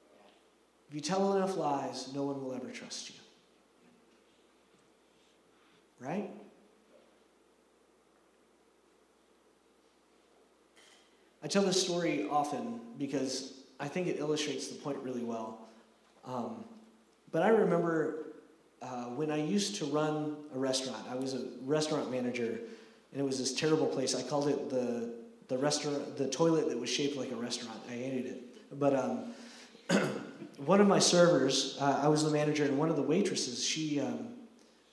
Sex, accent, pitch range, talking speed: male, American, 130-190 Hz, 145 wpm